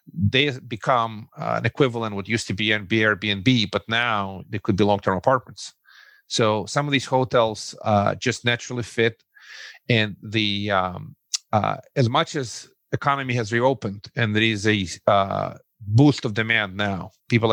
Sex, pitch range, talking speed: male, 105-120 Hz, 160 wpm